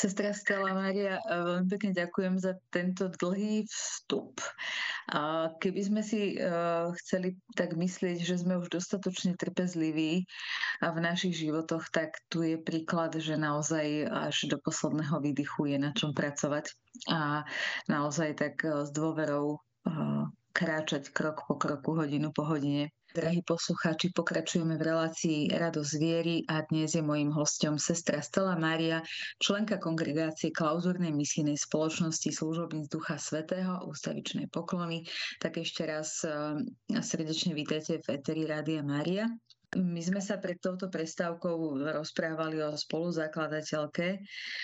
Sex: female